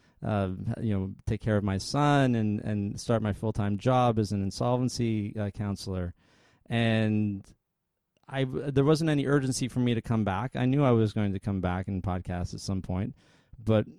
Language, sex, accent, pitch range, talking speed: English, male, American, 105-125 Hz, 190 wpm